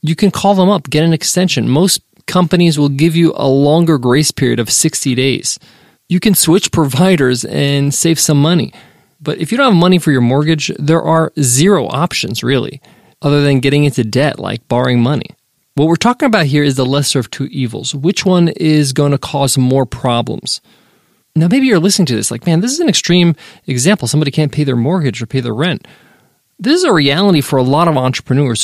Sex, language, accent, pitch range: male, English, American, 135-175 Hz